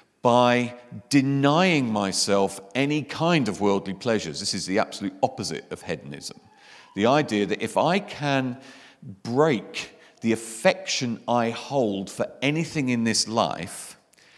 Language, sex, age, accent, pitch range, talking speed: English, male, 50-69, British, 100-130 Hz, 130 wpm